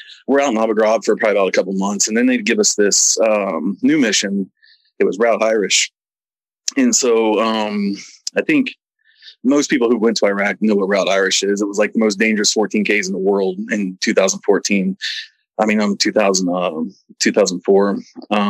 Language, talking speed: English, 200 wpm